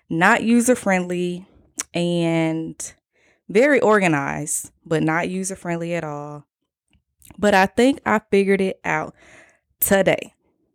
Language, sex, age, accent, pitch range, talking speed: English, female, 20-39, American, 160-205 Hz, 100 wpm